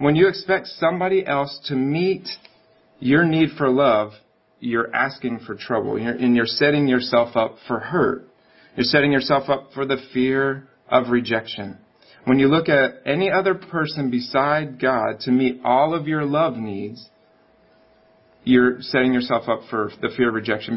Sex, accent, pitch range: male, American, 120-145 Hz